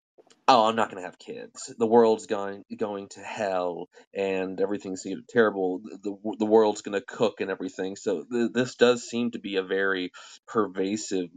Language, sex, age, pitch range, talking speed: English, male, 20-39, 95-115 Hz, 180 wpm